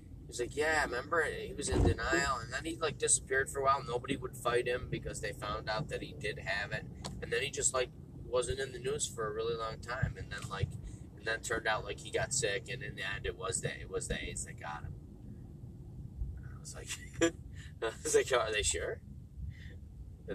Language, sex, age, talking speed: English, male, 20-39, 225 wpm